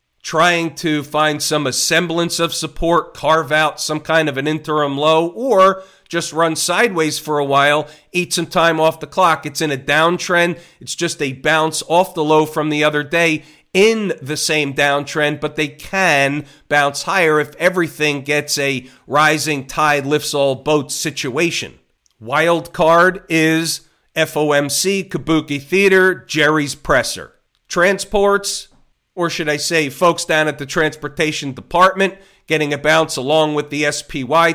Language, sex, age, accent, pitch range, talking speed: English, male, 40-59, American, 145-175 Hz, 155 wpm